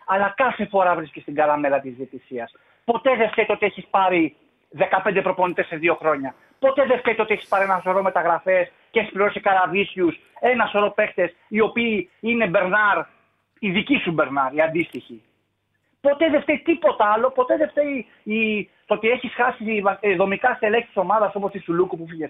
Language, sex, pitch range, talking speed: Greek, male, 175-245 Hz, 185 wpm